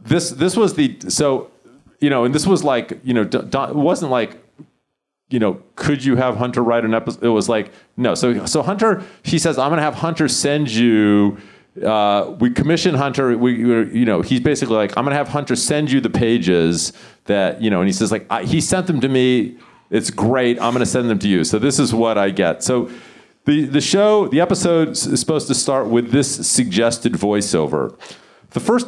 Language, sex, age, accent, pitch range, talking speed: English, male, 40-59, American, 110-145 Hz, 220 wpm